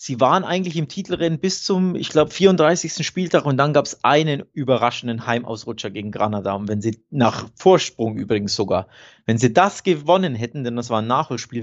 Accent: German